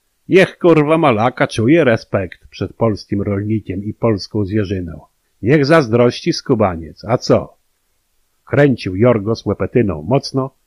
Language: Polish